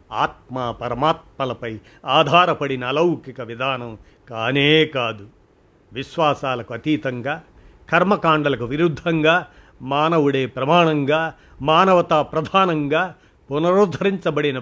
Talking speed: 65 wpm